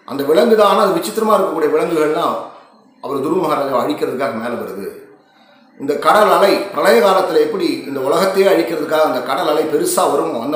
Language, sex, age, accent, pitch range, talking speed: Tamil, male, 30-49, native, 150-220 Hz, 150 wpm